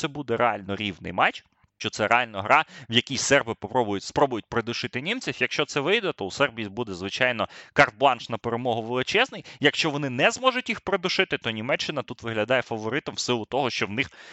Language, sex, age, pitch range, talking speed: Ukrainian, male, 20-39, 115-155 Hz, 190 wpm